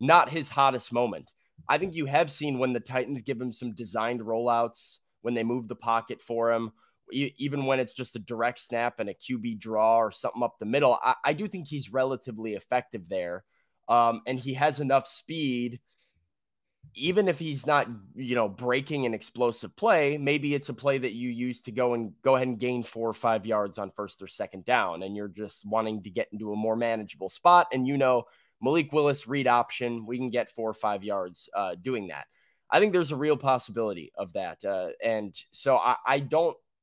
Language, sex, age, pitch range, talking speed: English, male, 20-39, 115-135 Hz, 210 wpm